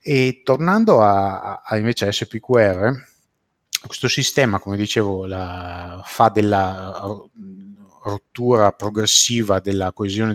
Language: Italian